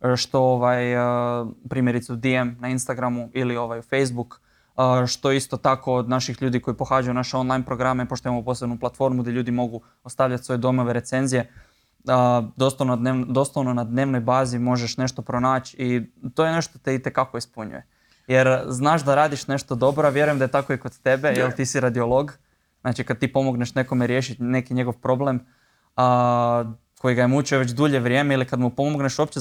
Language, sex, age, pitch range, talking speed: Croatian, male, 20-39, 125-135 Hz, 175 wpm